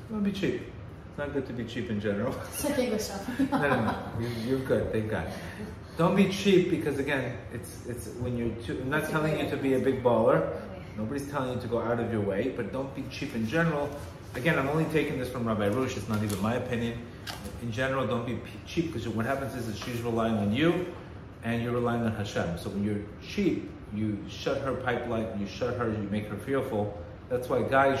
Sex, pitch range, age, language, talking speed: male, 95-120 Hz, 30-49, English, 220 wpm